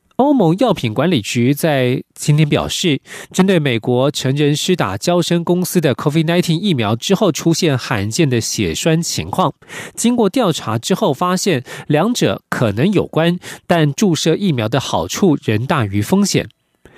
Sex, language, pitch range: male, French, 130-180 Hz